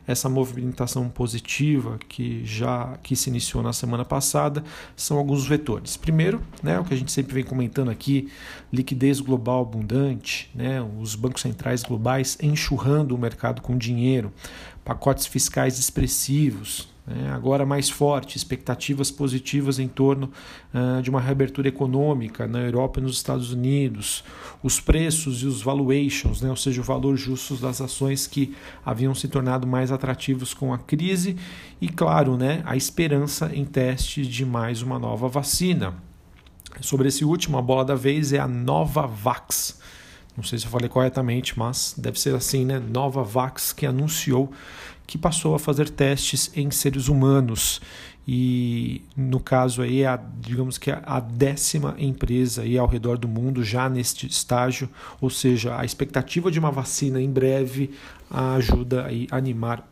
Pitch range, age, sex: 125-140 Hz, 40-59, male